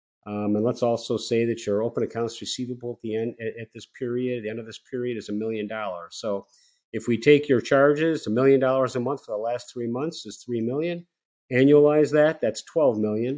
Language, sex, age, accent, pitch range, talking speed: English, male, 50-69, American, 105-140 Hz, 225 wpm